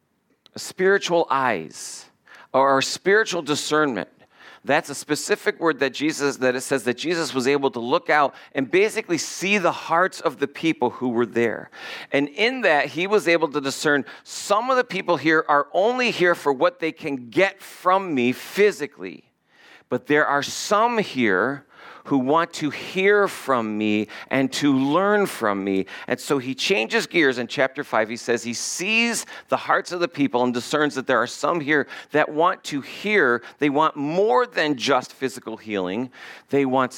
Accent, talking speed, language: American, 180 wpm, English